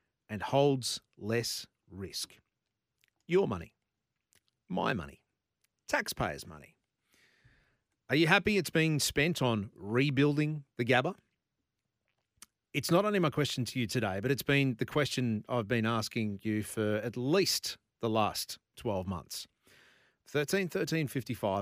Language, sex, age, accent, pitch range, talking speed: English, male, 40-59, Australian, 110-160 Hz, 125 wpm